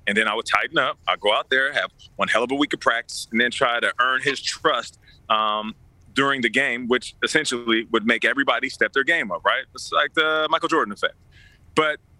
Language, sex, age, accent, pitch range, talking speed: English, male, 30-49, American, 120-165 Hz, 225 wpm